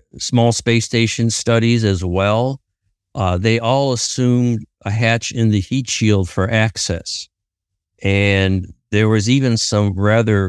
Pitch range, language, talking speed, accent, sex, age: 95-120 Hz, English, 135 wpm, American, male, 50-69